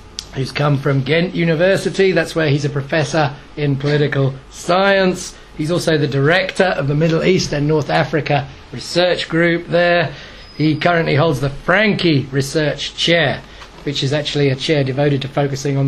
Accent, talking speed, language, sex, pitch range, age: British, 165 wpm, English, male, 140-165 Hz, 30-49